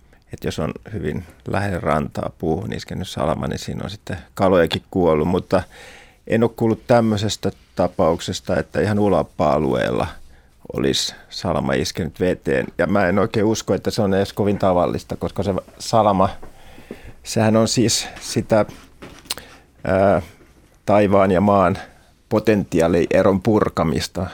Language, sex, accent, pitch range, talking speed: Finnish, male, native, 85-105 Hz, 130 wpm